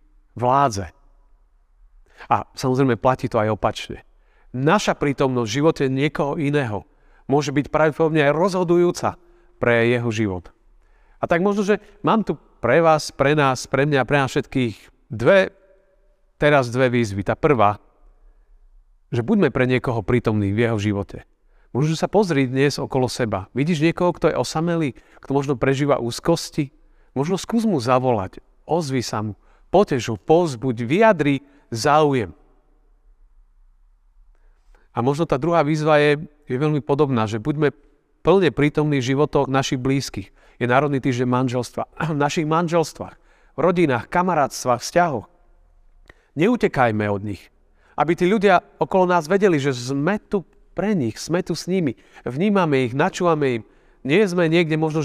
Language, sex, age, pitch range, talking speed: Slovak, male, 40-59, 120-165 Hz, 145 wpm